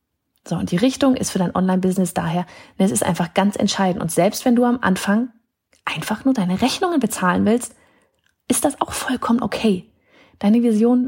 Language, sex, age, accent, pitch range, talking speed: German, female, 30-49, German, 180-230 Hz, 180 wpm